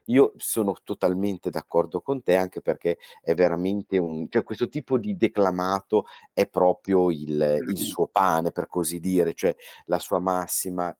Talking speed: 160 wpm